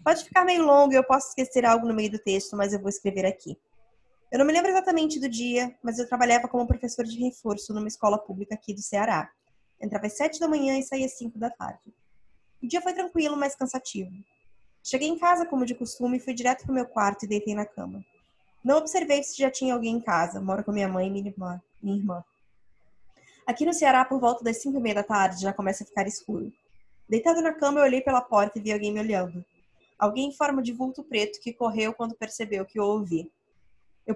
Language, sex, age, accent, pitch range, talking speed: Portuguese, female, 20-39, Brazilian, 210-275 Hz, 230 wpm